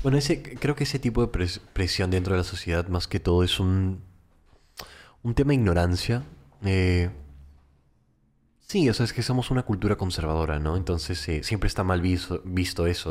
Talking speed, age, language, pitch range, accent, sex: 185 wpm, 20-39, Spanish, 80-95 Hz, Argentinian, male